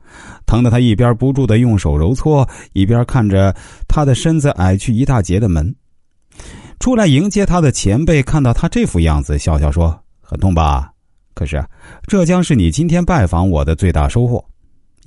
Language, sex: Chinese, male